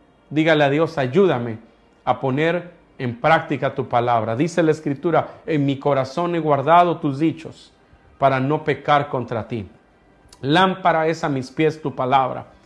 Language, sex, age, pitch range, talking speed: Spanish, male, 40-59, 140-175 Hz, 150 wpm